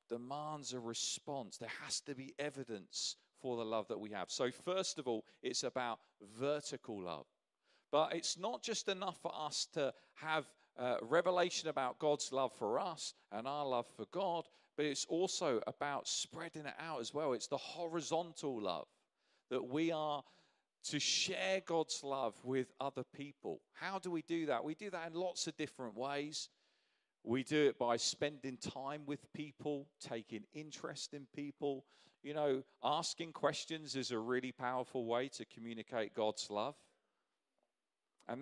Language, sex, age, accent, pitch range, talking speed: English, male, 40-59, British, 125-155 Hz, 165 wpm